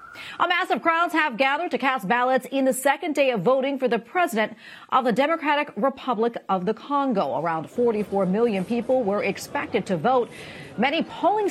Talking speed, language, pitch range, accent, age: 175 wpm, English, 195-275 Hz, American, 40-59